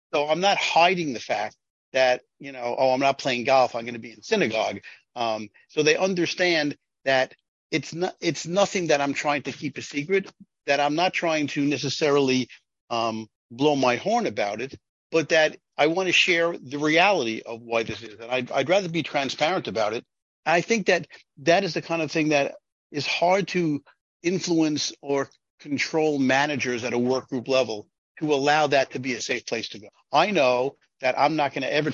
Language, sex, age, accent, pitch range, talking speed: English, male, 50-69, American, 130-165 Hz, 205 wpm